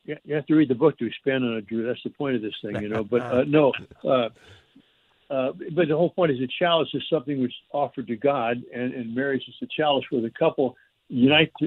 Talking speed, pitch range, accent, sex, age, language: 245 wpm, 135-185 Hz, American, male, 60-79, English